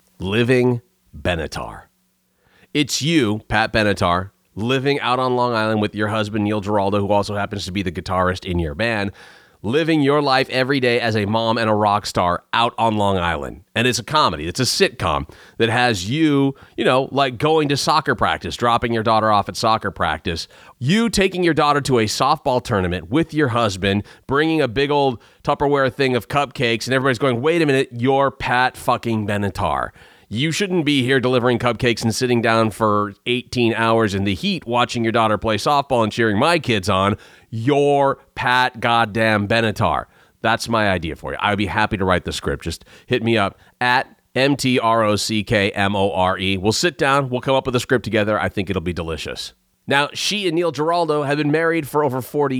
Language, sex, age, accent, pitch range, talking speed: English, male, 30-49, American, 105-140 Hz, 190 wpm